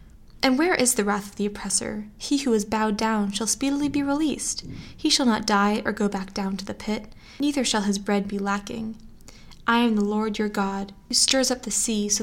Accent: American